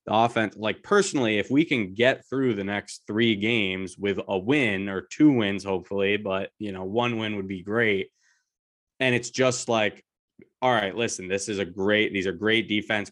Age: 20-39